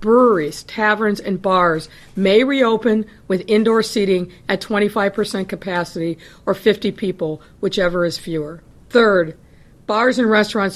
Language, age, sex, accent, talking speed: Finnish, 50-69, female, American, 125 wpm